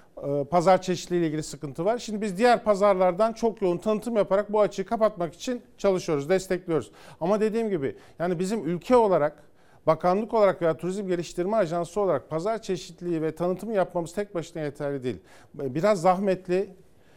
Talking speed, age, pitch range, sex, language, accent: 155 wpm, 50-69, 140-185 Hz, male, Turkish, native